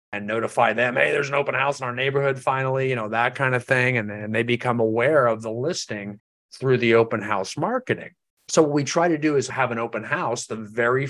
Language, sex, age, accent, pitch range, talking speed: English, male, 30-49, American, 110-145 Hz, 240 wpm